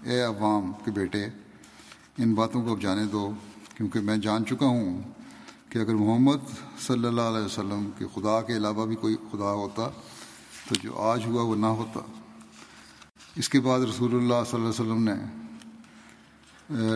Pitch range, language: 110-120 Hz, Urdu